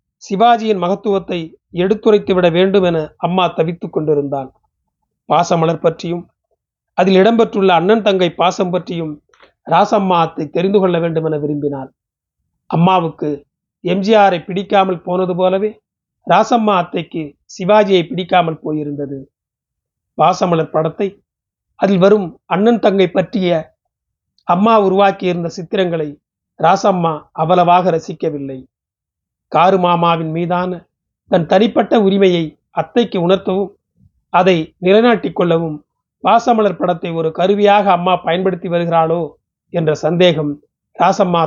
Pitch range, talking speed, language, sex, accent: 165-200 Hz, 95 wpm, Tamil, male, native